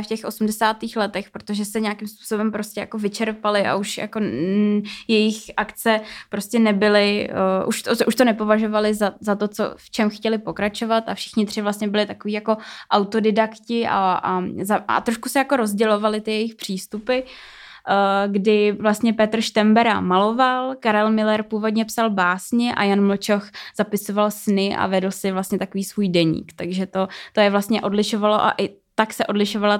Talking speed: 170 wpm